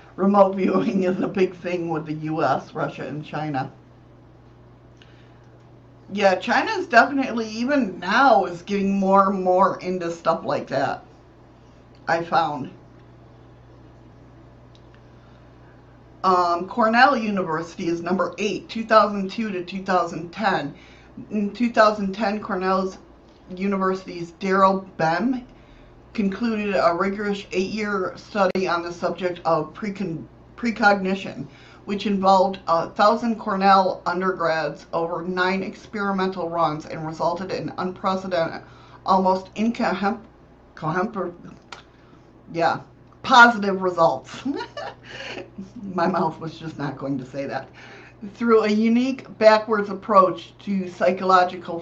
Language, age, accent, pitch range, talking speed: English, 50-69, American, 170-205 Hz, 105 wpm